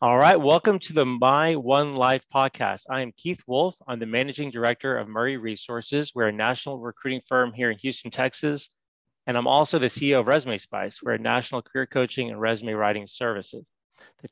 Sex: male